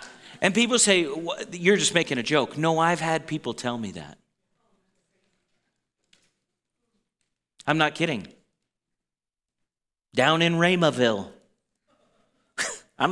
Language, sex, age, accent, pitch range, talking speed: English, male, 40-59, American, 130-220 Hz, 100 wpm